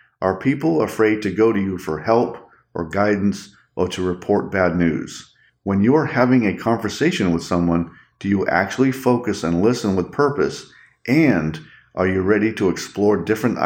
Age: 40-59